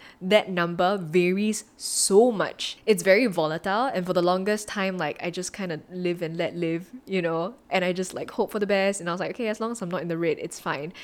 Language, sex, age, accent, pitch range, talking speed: English, female, 10-29, Malaysian, 180-235 Hz, 255 wpm